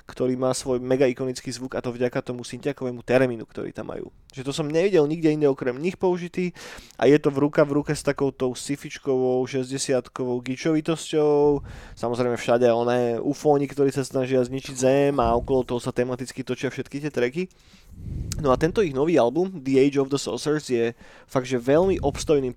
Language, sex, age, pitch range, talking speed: Slovak, male, 20-39, 120-145 Hz, 185 wpm